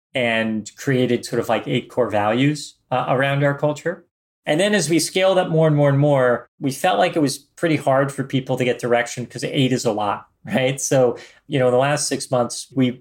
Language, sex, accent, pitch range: English, male, American, 120-150 Hz